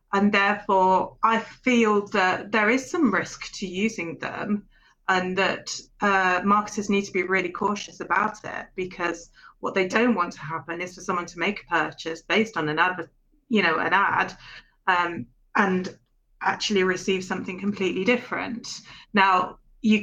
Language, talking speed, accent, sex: English, 160 wpm, British, female